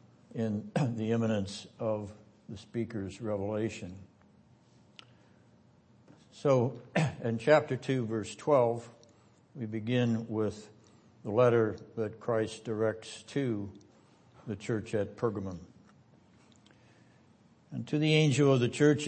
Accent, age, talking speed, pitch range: American, 60-79, 105 wpm, 110-130 Hz